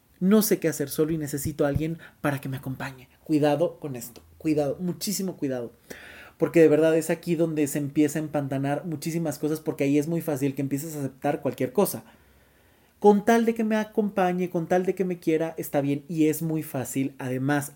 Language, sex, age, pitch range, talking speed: Spanish, male, 30-49, 145-190 Hz, 205 wpm